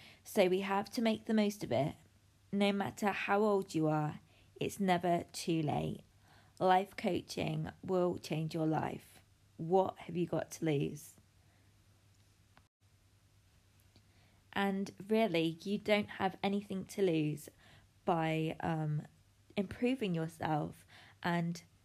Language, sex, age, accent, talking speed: English, female, 20-39, British, 120 wpm